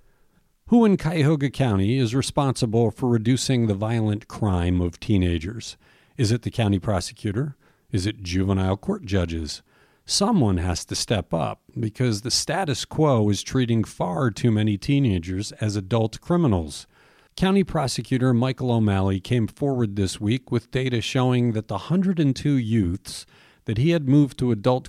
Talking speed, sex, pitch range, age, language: 150 wpm, male, 105-140 Hz, 50-69, English